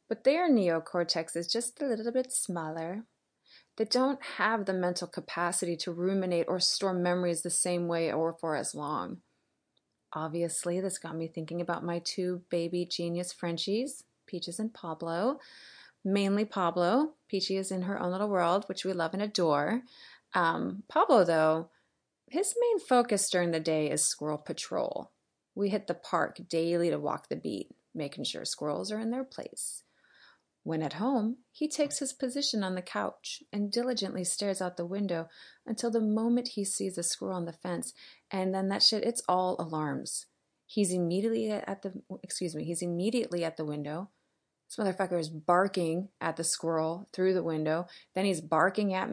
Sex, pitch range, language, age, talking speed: female, 170-215 Hz, English, 30-49, 170 wpm